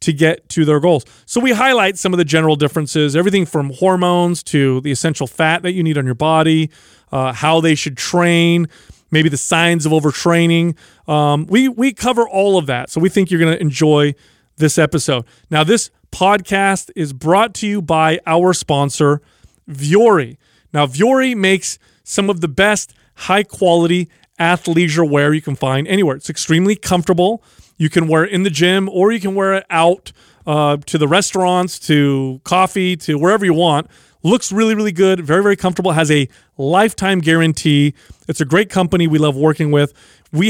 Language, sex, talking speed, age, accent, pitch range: English, male, 185 wpm, 30-49, American, 150-185 Hz